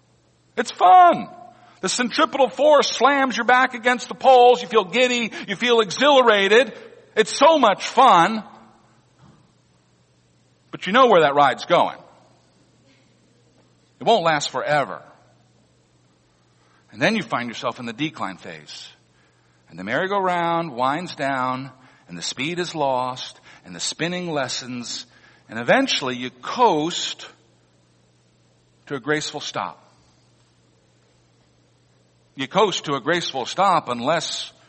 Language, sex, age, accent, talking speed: English, male, 50-69, American, 120 wpm